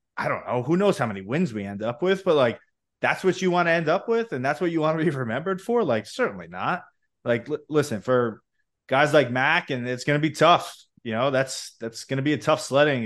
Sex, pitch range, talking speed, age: male, 110-140 Hz, 255 wpm, 20-39